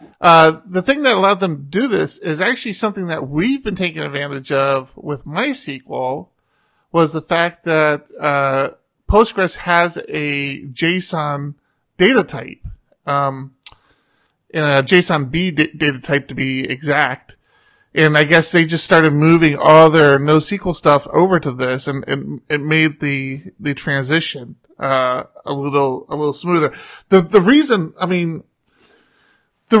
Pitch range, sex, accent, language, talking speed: 140-180 Hz, male, American, English, 150 wpm